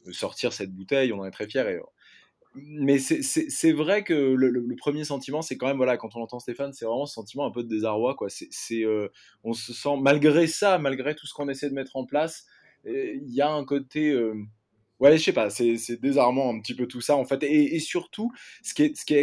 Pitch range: 125-165 Hz